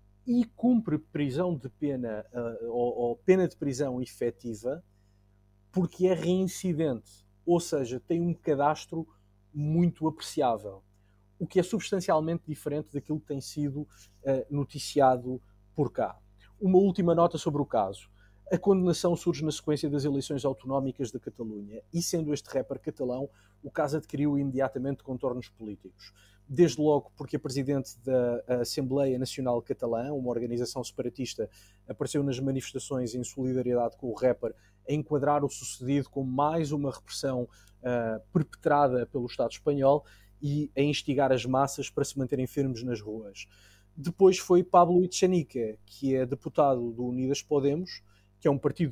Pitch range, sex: 120-150 Hz, male